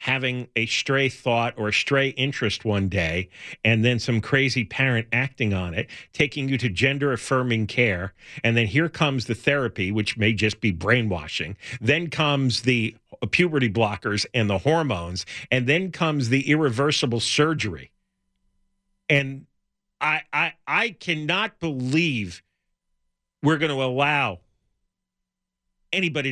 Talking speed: 135 wpm